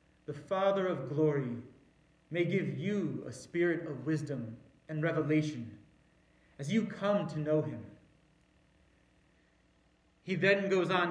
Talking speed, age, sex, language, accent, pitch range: 125 wpm, 30-49, male, English, American, 145-190 Hz